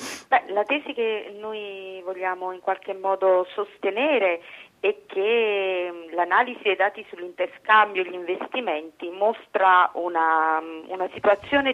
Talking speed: 120 wpm